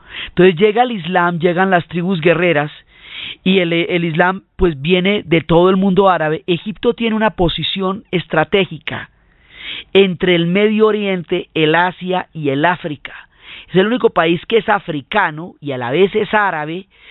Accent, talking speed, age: Colombian, 160 wpm, 30-49